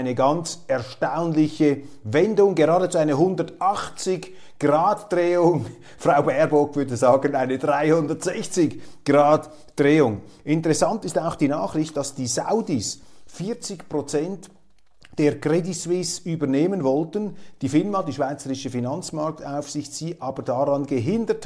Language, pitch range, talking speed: German, 130-165 Hz, 105 wpm